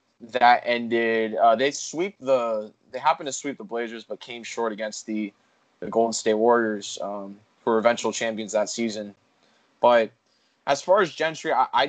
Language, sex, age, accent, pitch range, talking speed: English, male, 20-39, American, 115-135 Hz, 180 wpm